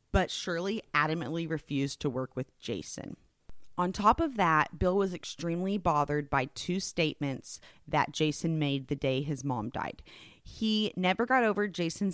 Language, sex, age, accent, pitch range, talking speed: English, female, 30-49, American, 145-190 Hz, 160 wpm